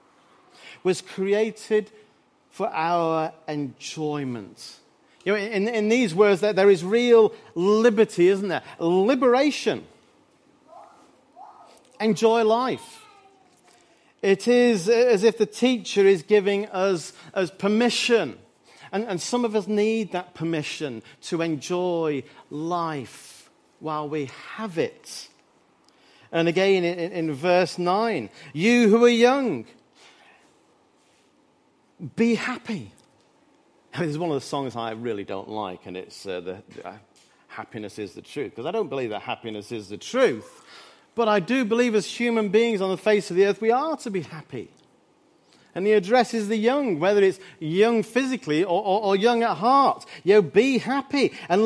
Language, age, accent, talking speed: English, 40-59, British, 145 wpm